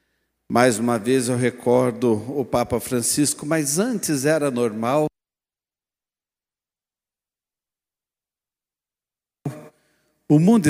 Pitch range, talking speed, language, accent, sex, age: 120-155 Hz, 80 wpm, Portuguese, Brazilian, male, 60-79